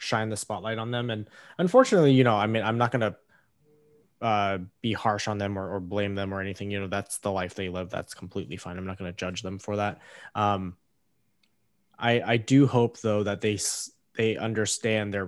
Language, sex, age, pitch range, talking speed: English, male, 20-39, 95-110 Hz, 210 wpm